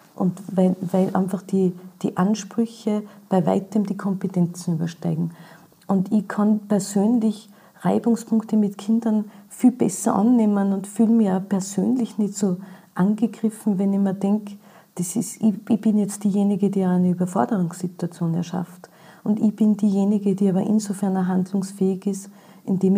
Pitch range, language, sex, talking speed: 185-210 Hz, German, female, 140 wpm